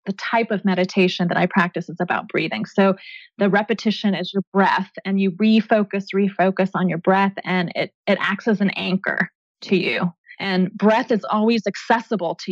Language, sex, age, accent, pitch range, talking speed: English, female, 20-39, American, 190-220 Hz, 180 wpm